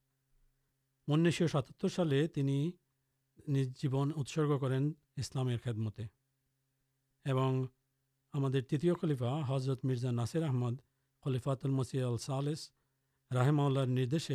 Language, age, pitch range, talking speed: Urdu, 50-69, 130-150 Hz, 65 wpm